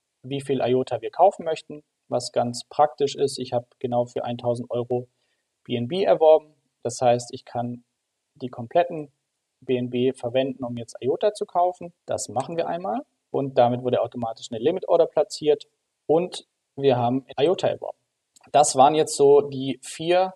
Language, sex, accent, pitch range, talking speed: German, male, German, 125-160 Hz, 160 wpm